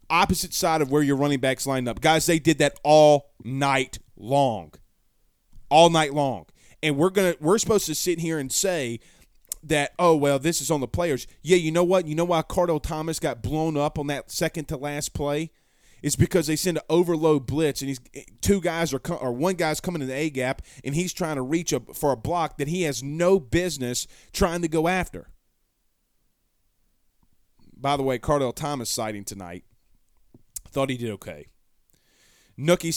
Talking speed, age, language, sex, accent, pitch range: 190 wpm, 30-49, English, male, American, 130-170 Hz